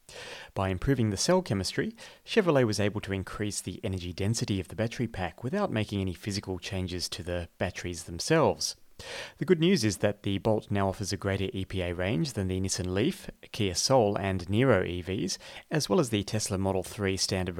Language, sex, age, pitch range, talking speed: English, male, 30-49, 95-110 Hz, 190 wpm